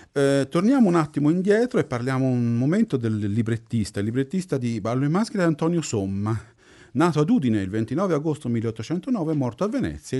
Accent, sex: native, male